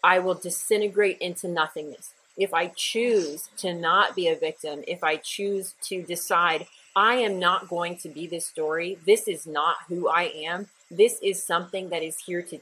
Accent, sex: American, female